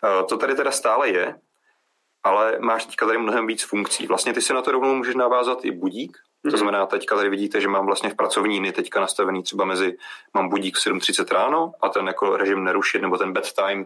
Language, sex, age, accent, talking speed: Czech, male, 30-49, native, 215 wpm